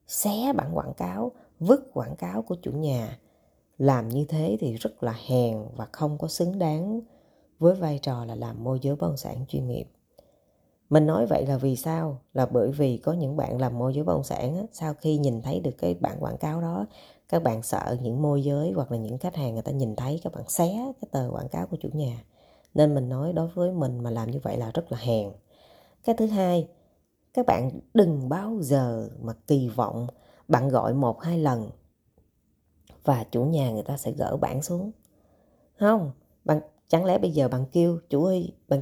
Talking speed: 210 wpm